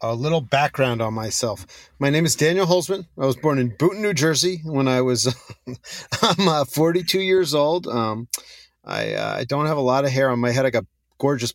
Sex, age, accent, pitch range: male, 30-49, American, 110-140 Hz